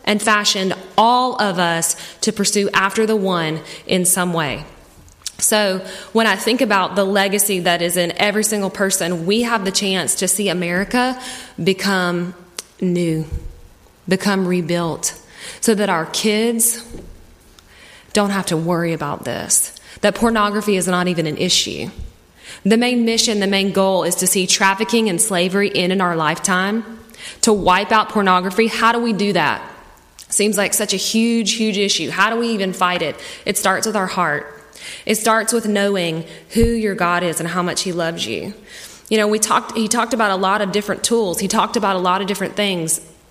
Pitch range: 180-220 Hz